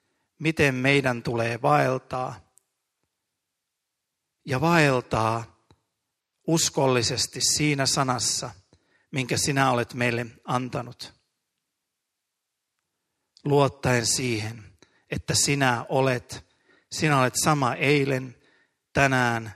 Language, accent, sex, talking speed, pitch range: Finnish, native, male, 75 wpm, 120-145 Hz